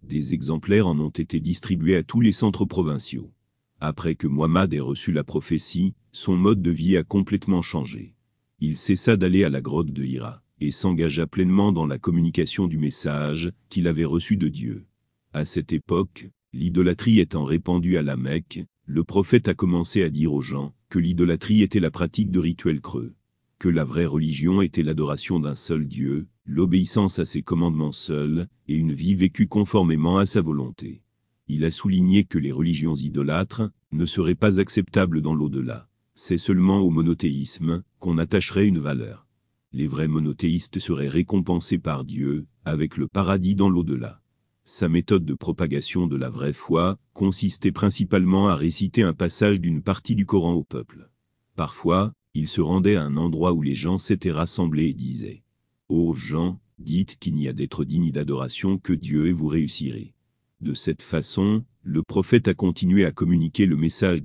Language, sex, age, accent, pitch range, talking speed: French, male, 40-59, French, 80-95 Hz, 175 wpm